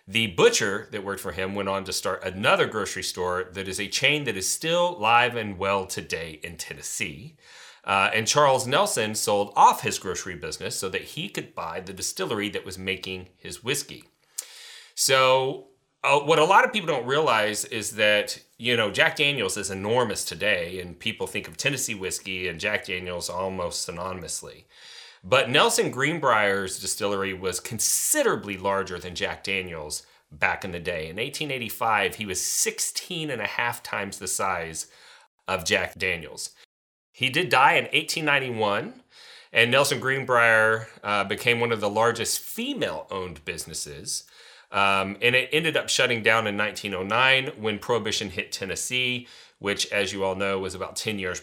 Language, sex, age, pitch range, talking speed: English, male, 30-49, 95-130 Hz, 165 wpm